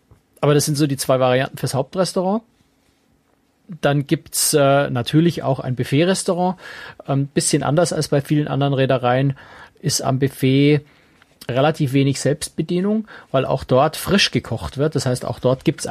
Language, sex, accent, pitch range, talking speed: German, male, German, 120-155 Hz, 165 wpm